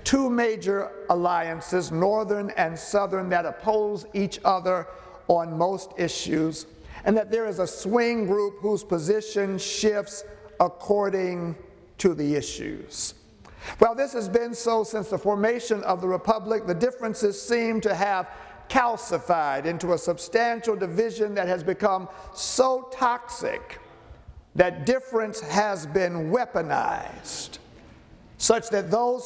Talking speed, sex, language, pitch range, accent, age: 125 wpm, male, English, 180-225 Hz, American, 50-69